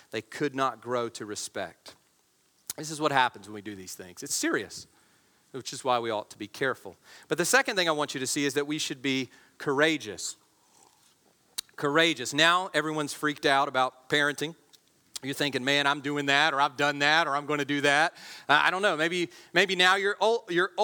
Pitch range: 150-245 Hz